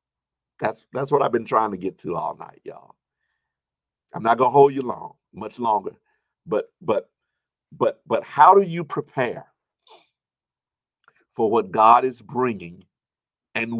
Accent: American